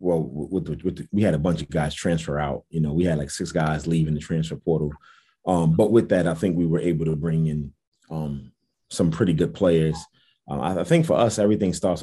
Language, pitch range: English, 80-90 Hz